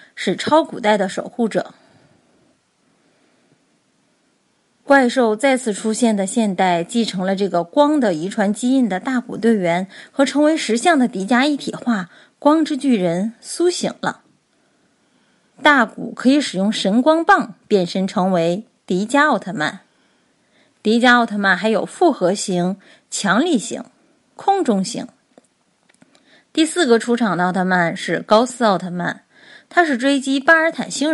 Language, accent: Chinese, native